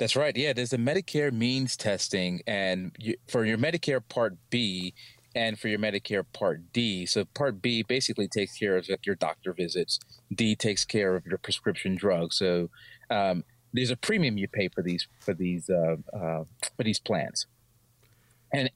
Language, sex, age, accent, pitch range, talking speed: English, male, 30-49, American, 105-125 Hz, 175 wpm